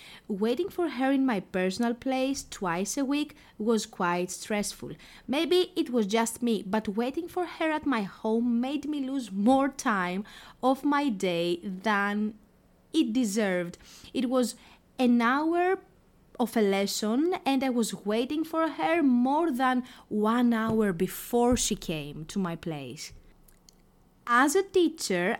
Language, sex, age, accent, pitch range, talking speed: Greek, female, 20-39, Spanish, 205-275 Hz, 145 wpm